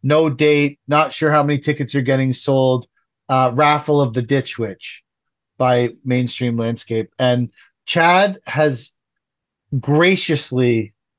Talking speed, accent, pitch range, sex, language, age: 125 wpm, American, 125-150 Hz, male, English, 40-59